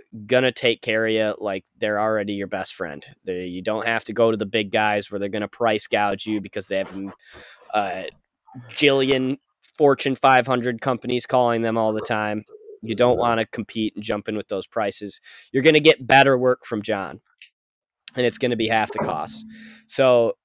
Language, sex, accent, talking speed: English, male, American, 200 wpm